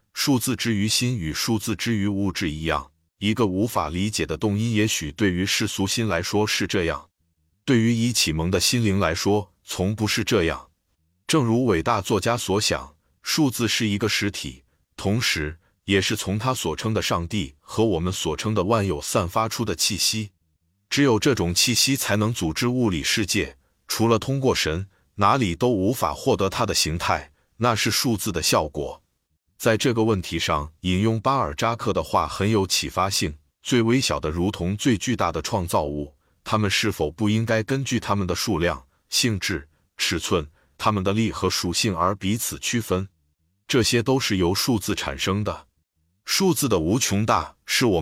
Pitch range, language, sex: 85-115 Hz, Chinese, male